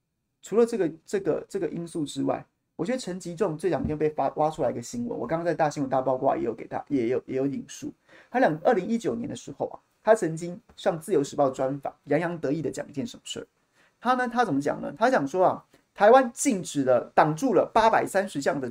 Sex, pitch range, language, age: male, 145-225 Hz, Chinese, 30-49